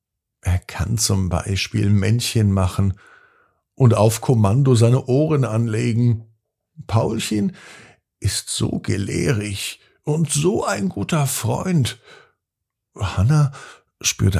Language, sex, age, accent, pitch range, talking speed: German, male, 50-69, German, 95-120 Hz, 95 wpm